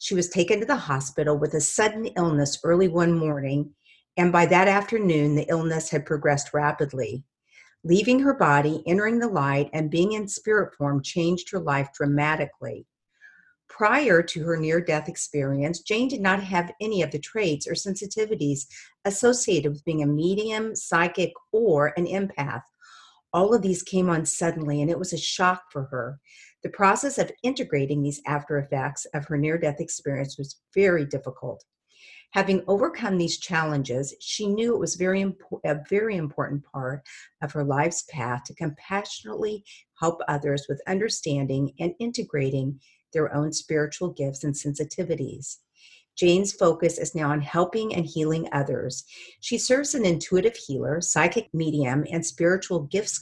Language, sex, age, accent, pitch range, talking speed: English, female, 50-69, American, 145-190 Hz, 155 wpm